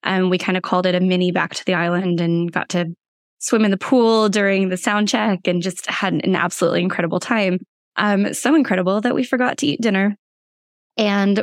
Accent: American